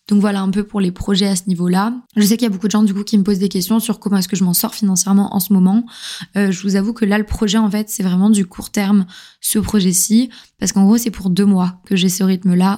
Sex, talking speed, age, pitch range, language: female, 300 wpm, 20-39, 185-210 Hz, French